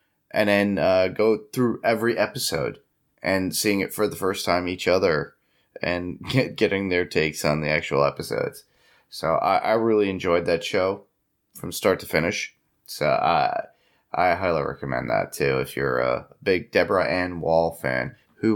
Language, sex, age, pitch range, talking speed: English, male, 30-49, 85-115 Hz, 170 wpm